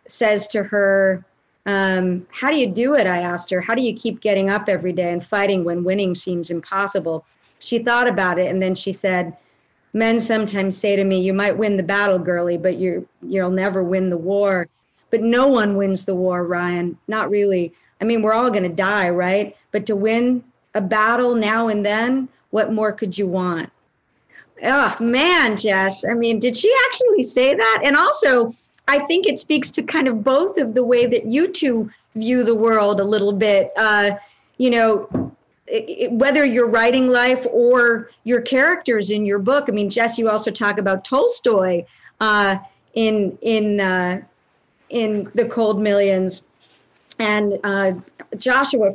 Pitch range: 195-245 Hz